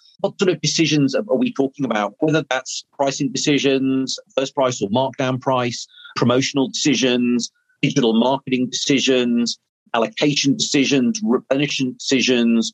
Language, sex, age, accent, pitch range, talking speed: English, male, 40-59, British, 115-150 Hz, 120 wpm